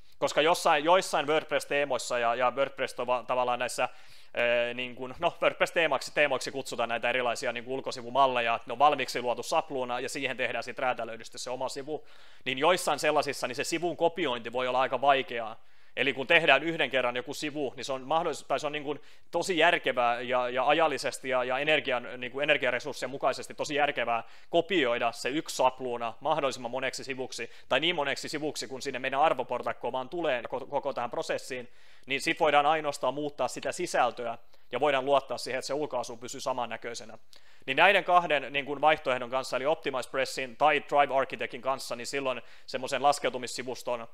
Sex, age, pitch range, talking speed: male, 30-49, 125-150 Hz, 160 wpm